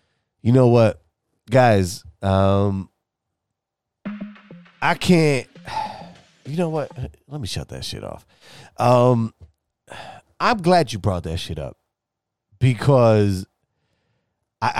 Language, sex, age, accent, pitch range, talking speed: English, male, 30-49, American, 85-110 Hz, 105 wpm